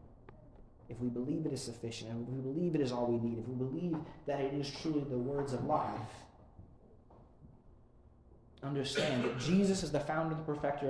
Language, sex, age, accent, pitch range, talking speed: English, male, 30-49, American, 115-155 Hz, 185 wpm